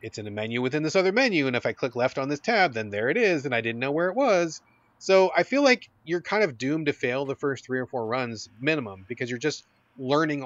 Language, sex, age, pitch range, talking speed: English, male, 30-49, 125-160 Hz, 275 wpm